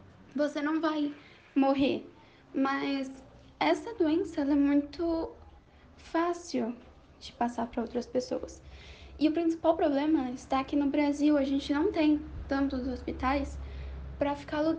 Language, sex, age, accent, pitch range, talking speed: Portuguese, female, 10-29, Brazilian, 260-310 Hz, 130 wpm